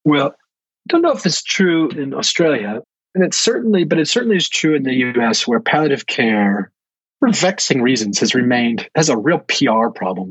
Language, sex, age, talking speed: English, male, 40-59, 190 wpm